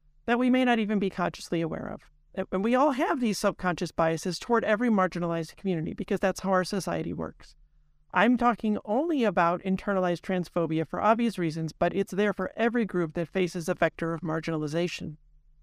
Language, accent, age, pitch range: English, American, 50-69, 165-215 Hz